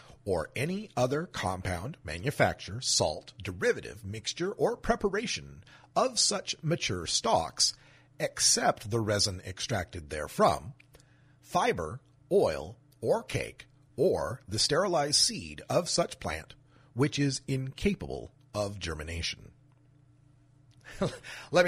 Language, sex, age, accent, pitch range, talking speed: English, male, 40-59, American, 125-165 Hz, 100 wpm